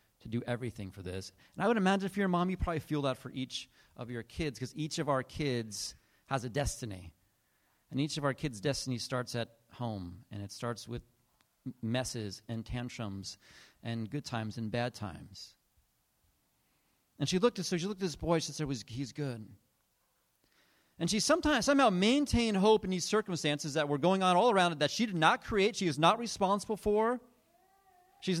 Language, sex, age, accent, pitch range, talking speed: English, male, 30-49, American, 125-200 Hz, 195 wpm